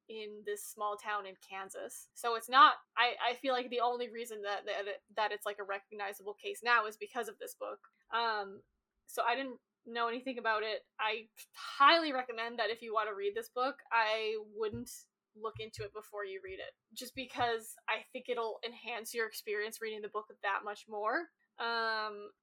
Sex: female